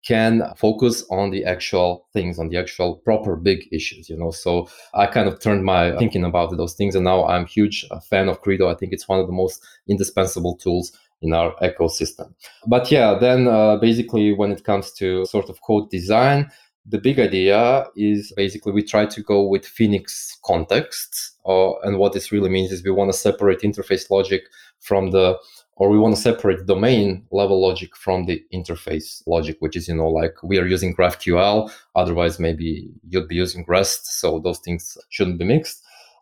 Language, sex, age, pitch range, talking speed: English, male, 20-39, 90-105 Hz, 195 wpm